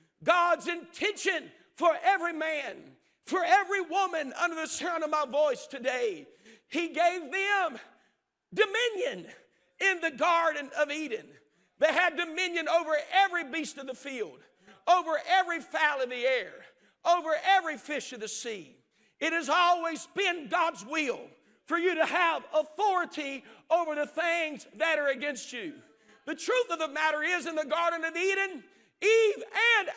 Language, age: English, 50-69